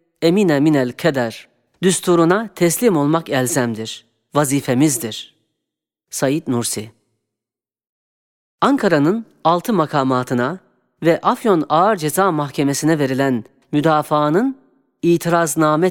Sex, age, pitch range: female, 40-59, 150-210 Hz